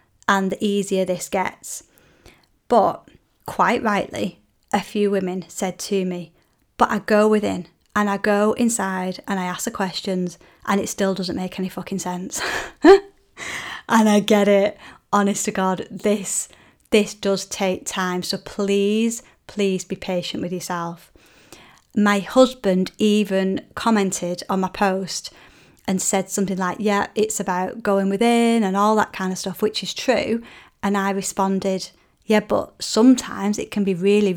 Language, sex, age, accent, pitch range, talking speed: English, female, 30-49, British, 185-210 Hz, 155 wpm